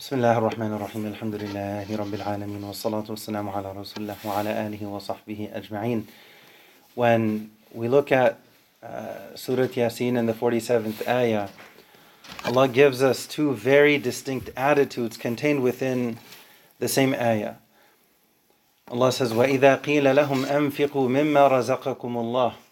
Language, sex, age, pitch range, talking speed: English, male, 30-49, 120-150 Hz, 100 wpm